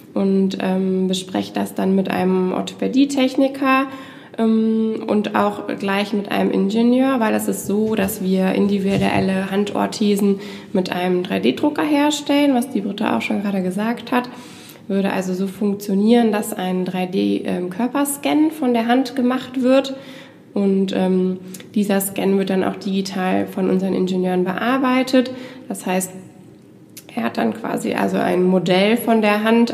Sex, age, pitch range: female, 20-39, 185-230 Hz